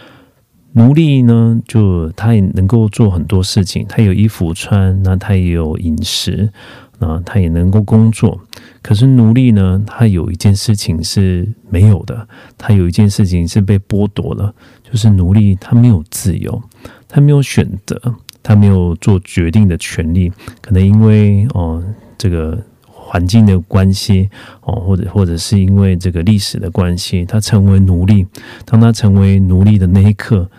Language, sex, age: Korean, male, 40-59